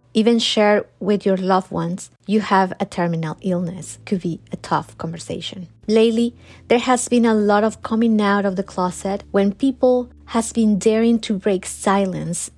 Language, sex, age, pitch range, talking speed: English, female, 30-49, 190-225 Hz, 170 wpm